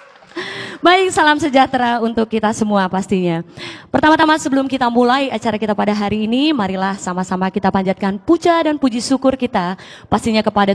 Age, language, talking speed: 20-39, Indonesian, 150 wpm